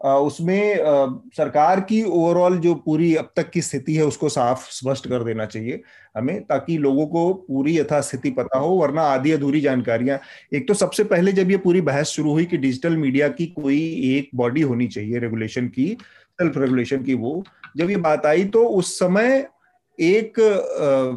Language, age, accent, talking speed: Hindi, 30-49, native, 175 wpm